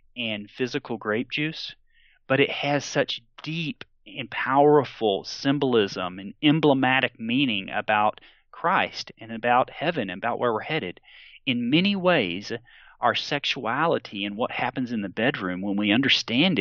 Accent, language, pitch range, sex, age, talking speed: American, English, 120-160 Hz, male, 40-59, 140 wpm